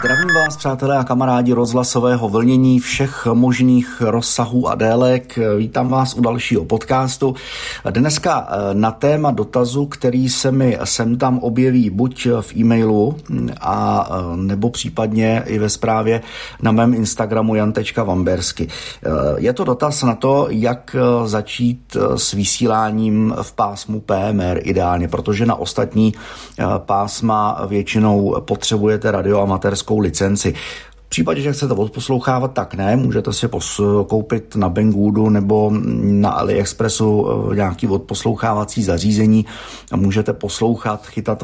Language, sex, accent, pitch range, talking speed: Czech, male, native, 105-125 Hz, 125 wpm